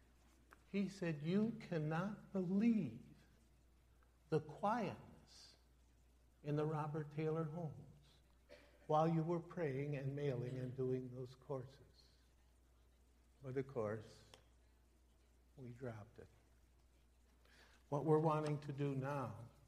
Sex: male